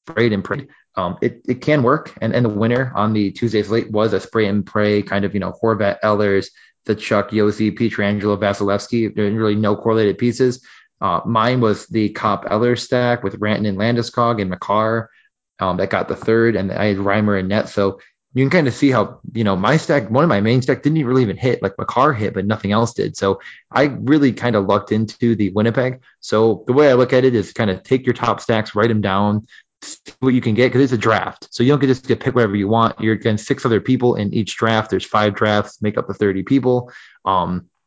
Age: 20-39